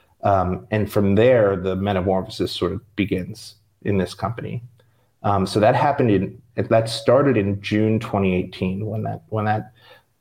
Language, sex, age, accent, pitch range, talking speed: English, male, 30-49, American, 95-115 Hz, 155 wpm